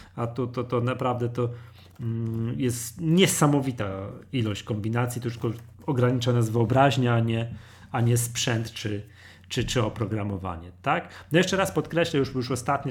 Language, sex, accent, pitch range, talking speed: Polish, male, native, 100-130 Hz, 135 wpm